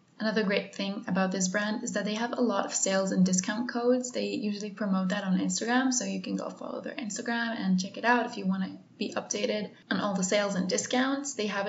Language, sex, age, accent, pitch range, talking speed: English, female, 20-39, Canadian, 190-245 Hz, 245 wpm